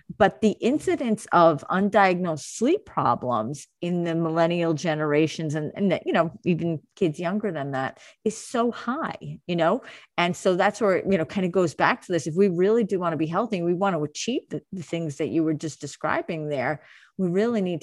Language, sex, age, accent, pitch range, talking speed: English, female, 30-49, American, 160-210 Hz, 205 wpm